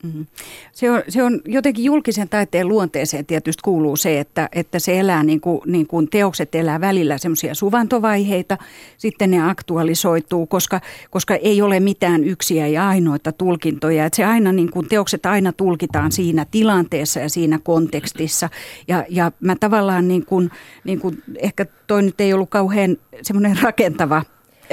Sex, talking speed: female, 160 wpm